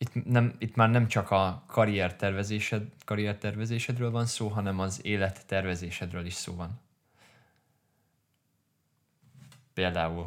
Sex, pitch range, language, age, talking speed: male, 90-120 Hz, Hungarian, 20-39, 110 wpm